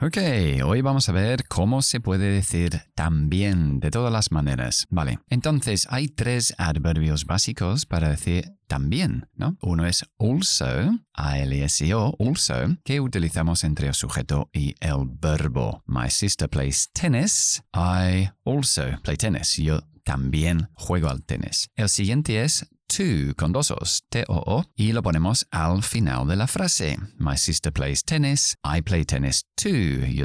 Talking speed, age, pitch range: 145 wpm, 40-59, 80-120 Hz